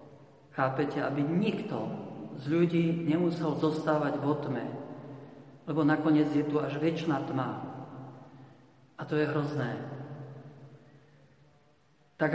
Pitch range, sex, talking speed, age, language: 135-155 Hz, male, 100 wpm, 50-69, Slovak